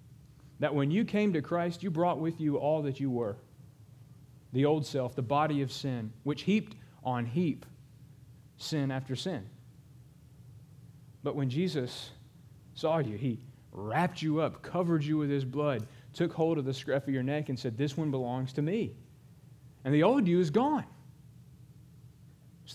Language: English